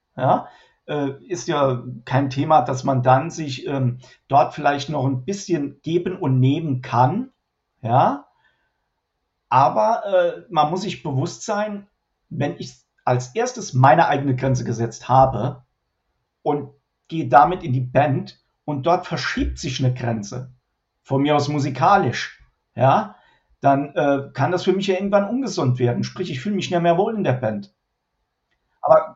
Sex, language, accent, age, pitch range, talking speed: male, German, German, 50-69, 130-170 Hz, 150 wpm